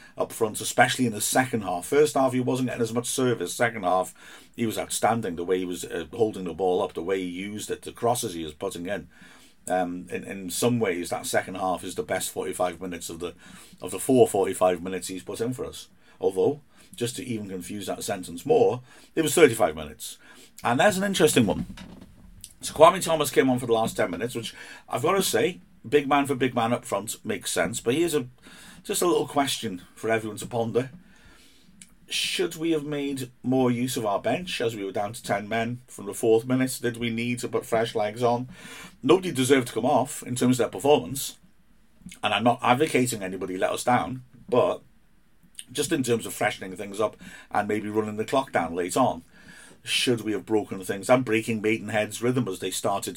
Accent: British